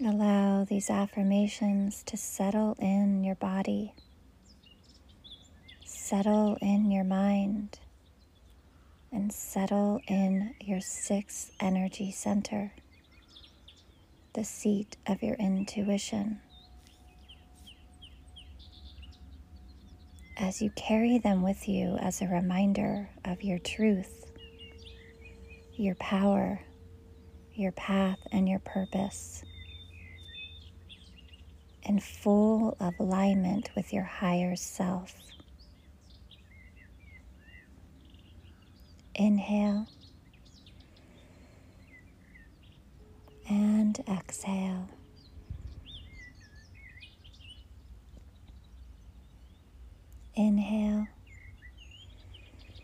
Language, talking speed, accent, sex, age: English, 60 wpm, American, female, 30-49